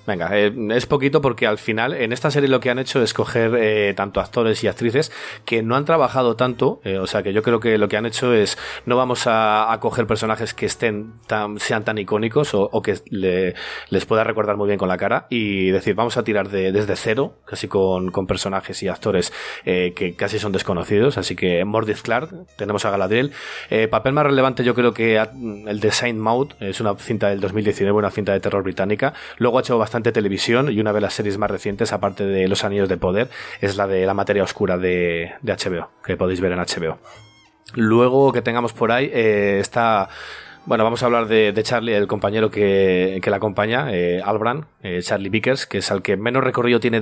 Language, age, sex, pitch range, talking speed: Spanish, 30-49, male, 100-120 Hz, 220 wpm